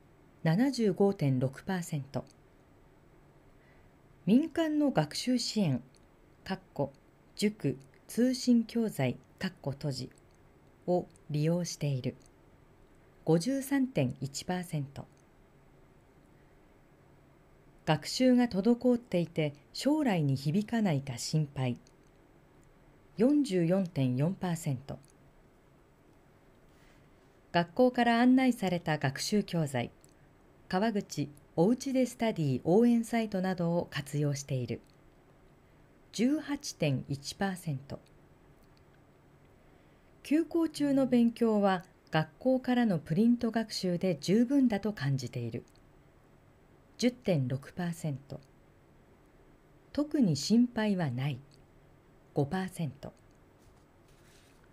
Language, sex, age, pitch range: Japanese, female, 40-59, 140-230 Hz